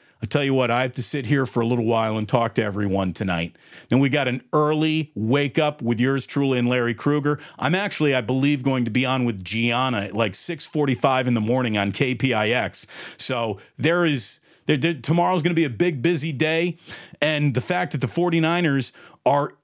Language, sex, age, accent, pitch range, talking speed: English, male, 40-59, American, 120-160 Hz, 200 wpm